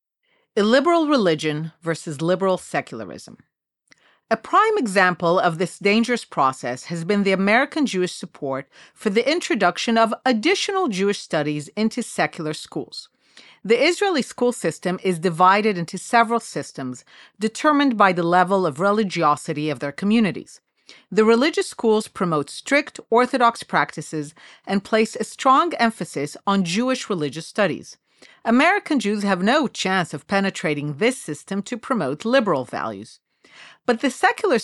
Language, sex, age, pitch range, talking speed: English, female, 40-59, 175-255 Hz, 135 wpm